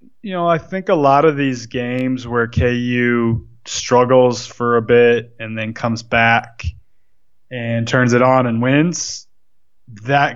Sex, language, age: male, English, 20-39